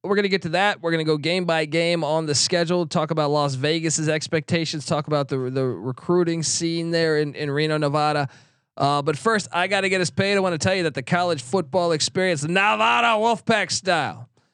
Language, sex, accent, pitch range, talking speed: English, male, American, 145-200 Hz, 215 wpm